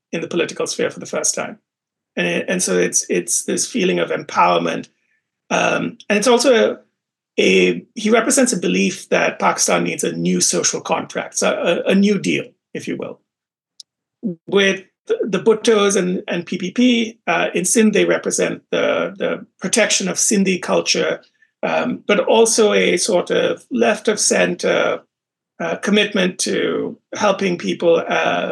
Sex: male